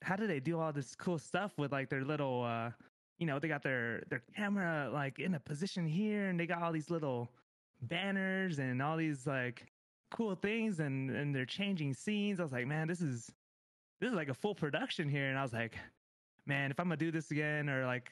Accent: American